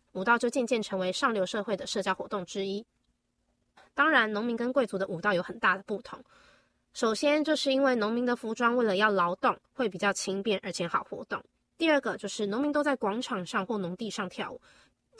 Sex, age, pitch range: female, 20-39, 195-250 Hz